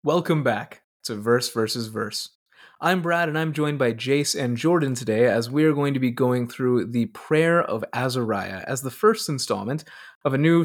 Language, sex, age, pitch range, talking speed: English, male, 20-39, 120-155 Hz, 195 wpm